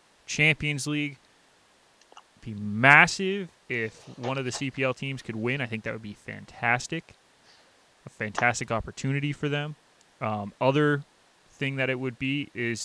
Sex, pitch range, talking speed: male, 115-140 Hz, 145 wpm